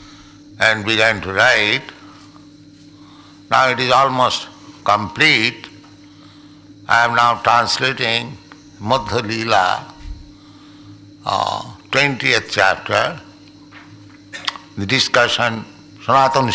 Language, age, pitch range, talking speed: English, 60-79, 100-145 Hz, 75 wpm